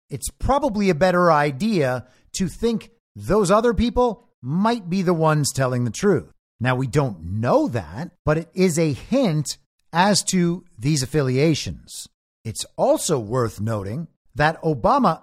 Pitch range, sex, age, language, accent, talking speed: 125-185 Hz, male, 50-69, English, American, 145 wpm